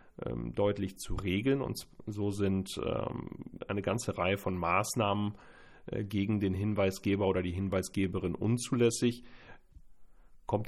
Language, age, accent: German, 40-59, German